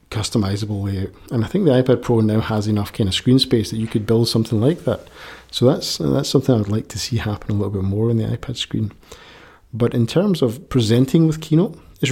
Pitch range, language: 105-135 Hz, English